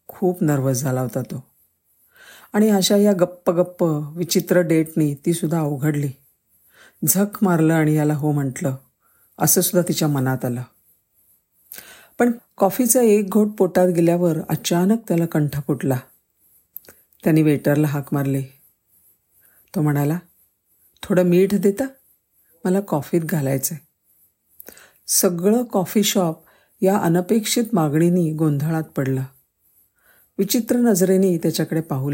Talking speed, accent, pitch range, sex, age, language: 90 wpm, native, 140-190 Hz, female, 50-69, Marathi